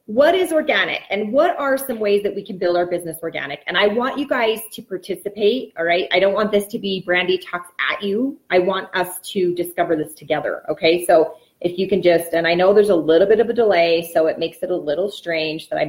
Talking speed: 250 wpm